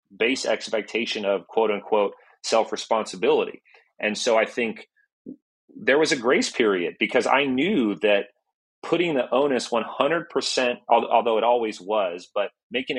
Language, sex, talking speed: English, male, 135 wpm